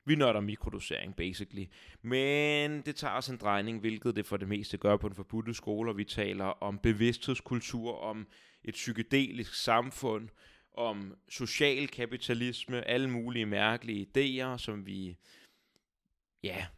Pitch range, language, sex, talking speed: 105-130 Hz, Danish, male, 140 wpm